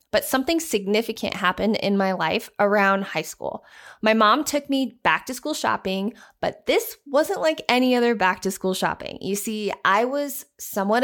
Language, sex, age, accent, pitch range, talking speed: English, female, 20-39, American, 200-265 Hz, 180 wpm